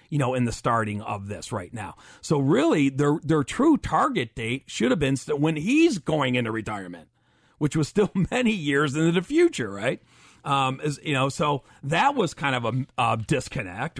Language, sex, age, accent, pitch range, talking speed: English, male, 40-59, American, 115-155 Hz, 195 wpm